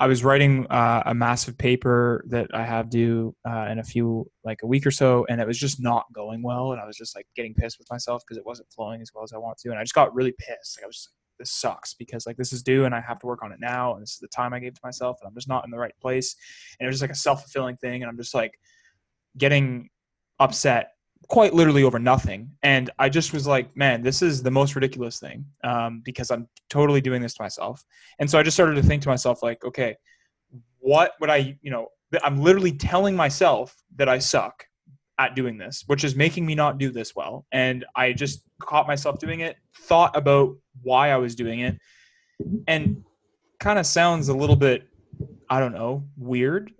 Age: 20-39